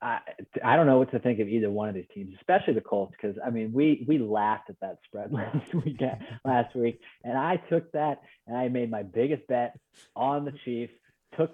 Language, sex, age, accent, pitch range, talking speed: English, male, 30-49, American, 110-150 Hz, 225 wpm